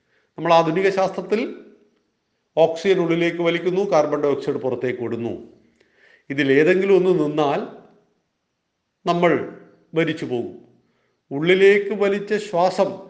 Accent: native